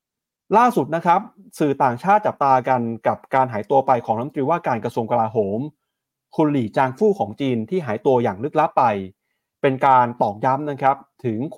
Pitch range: 125-165 Hz